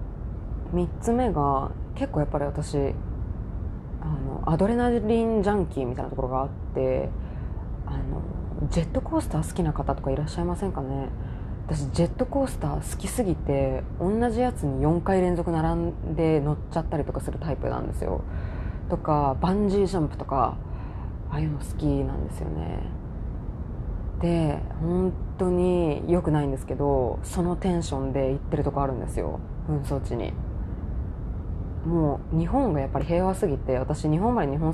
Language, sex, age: Japanese, female, 20-39